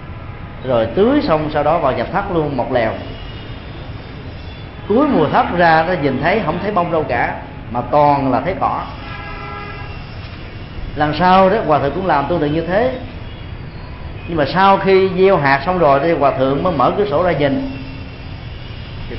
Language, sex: Vietnamese, male